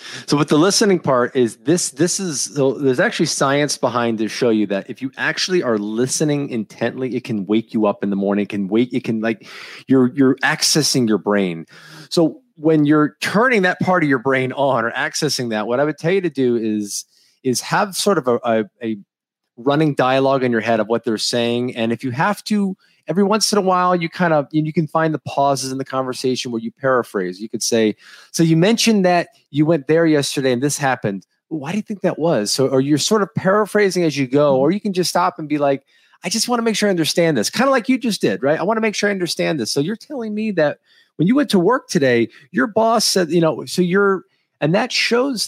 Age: 30-49